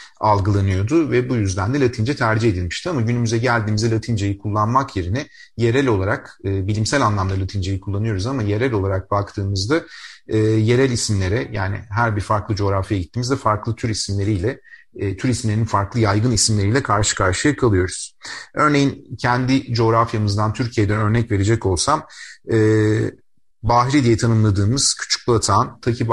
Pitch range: 105-130 Hz